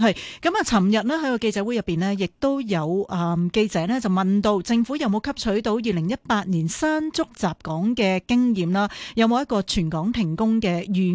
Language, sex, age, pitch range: Chinese, female, 30-49, 185-235 Hz